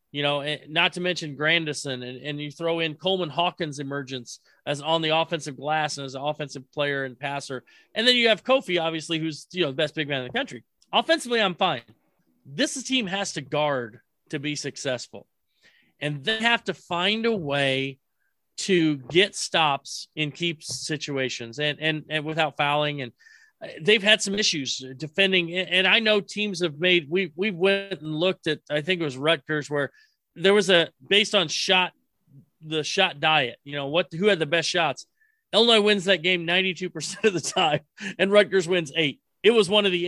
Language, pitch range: English, 150-195 Hz